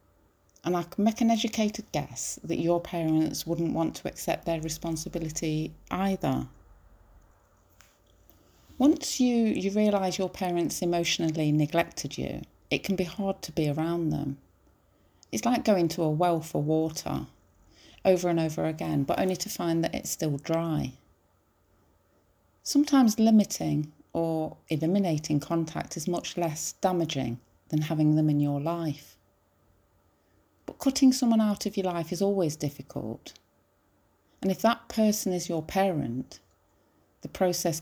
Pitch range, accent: 130-190 Hz, British